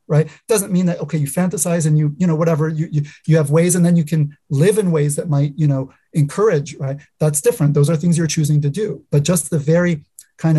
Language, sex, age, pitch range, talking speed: English, male, 30-49, 145-165 Hz, 250 wpm